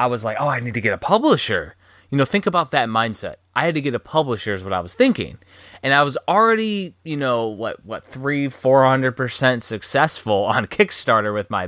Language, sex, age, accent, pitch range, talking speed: English, male, 20-39, American, 105-135 Hz, 215 wpm